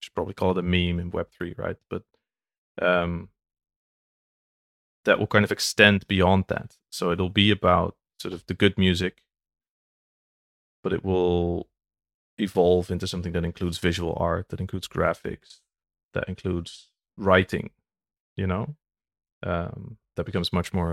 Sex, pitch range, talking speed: male, 85-95 Hz, 145 wpm